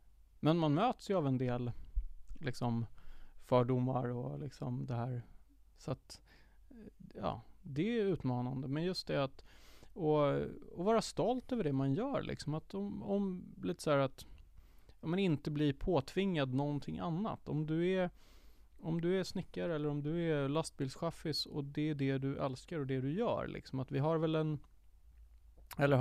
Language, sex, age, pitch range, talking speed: Swedish, male, 30-49, 125-155 Hz, 165 wpm